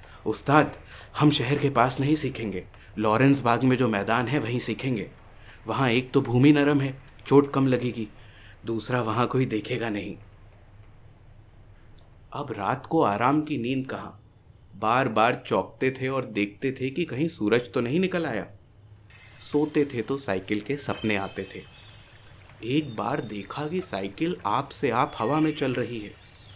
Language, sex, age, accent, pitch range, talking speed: Hindi, male, 30-49, native, 105-140 Hz, 160 wpm